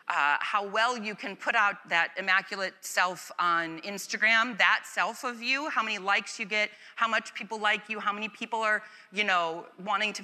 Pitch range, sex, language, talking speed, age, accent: 180-255 Hz, female, English, 200 wpm, 30-49, American